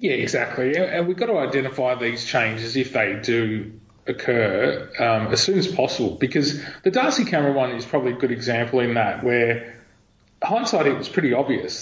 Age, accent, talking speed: 30-49, Australian, 185 wpm